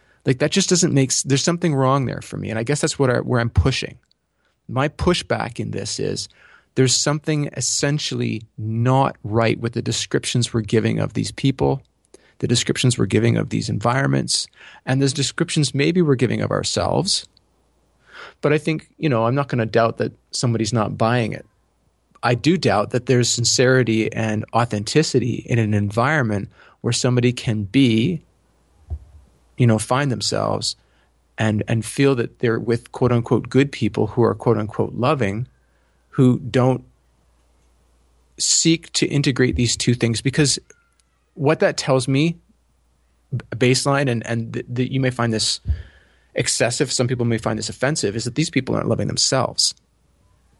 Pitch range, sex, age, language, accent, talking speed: 110-135 Hz, male, 30-49, English, American, 160 wpm